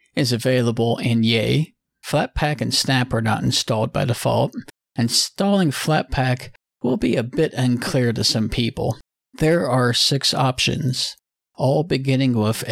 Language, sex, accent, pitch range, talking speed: English, male, American, 120-140 Hz, 135 wpm